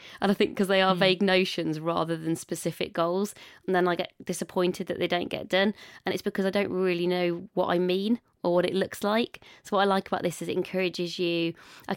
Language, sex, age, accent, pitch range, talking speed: English, female, 20-39, British, 170-190 Hz, 240 wpm